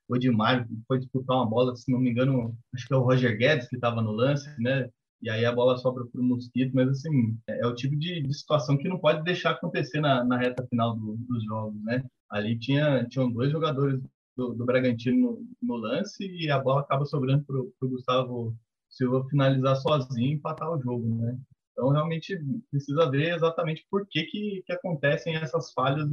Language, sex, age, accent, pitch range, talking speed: Portuguese, male, 20-39, Brazilian, 125-150 Hz, 200 wpm